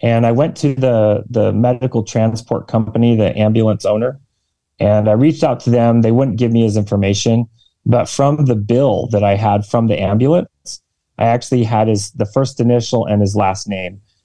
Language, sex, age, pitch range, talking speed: English, male, 30-49, 105-130 Hz, 190 wpm